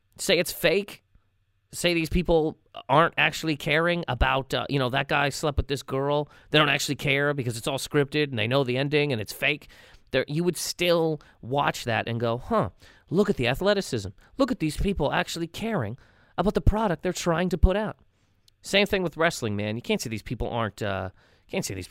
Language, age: English, 30-49